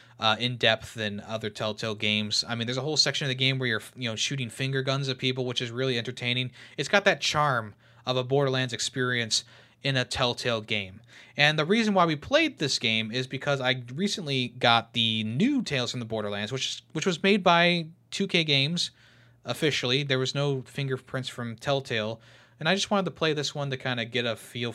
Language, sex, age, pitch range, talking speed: English, male, 20-39, 115-145 Hz, 215 wpm